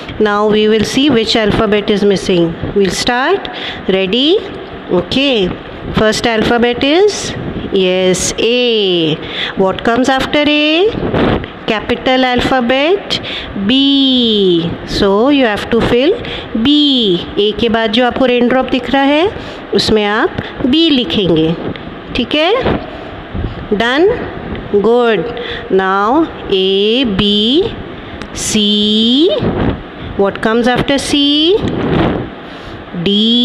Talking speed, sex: 95 wpm, female